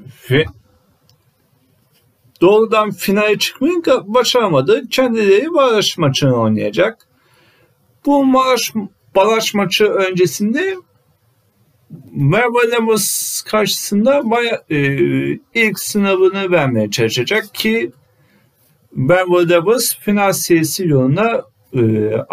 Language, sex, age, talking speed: Turkish, male, 50-69, 75 wpm